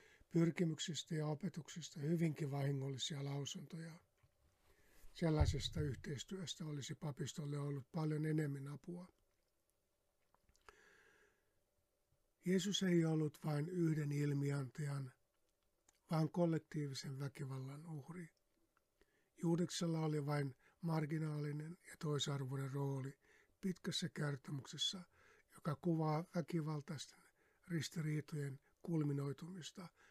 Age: 60-79